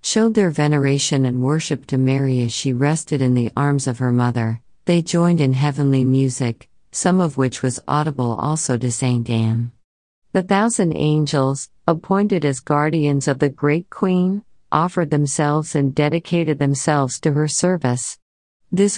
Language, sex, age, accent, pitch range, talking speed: English, female, 50-69, American, 130-155 Hz, 155 wpm